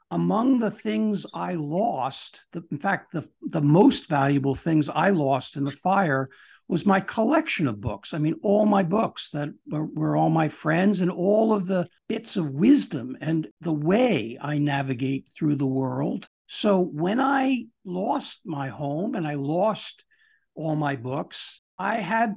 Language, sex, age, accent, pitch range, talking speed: English, male, 60-79, American, 155-220 Hz, 165 wpm